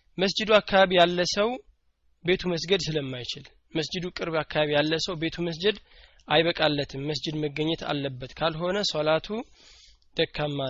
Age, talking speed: 20-39, 105 wpm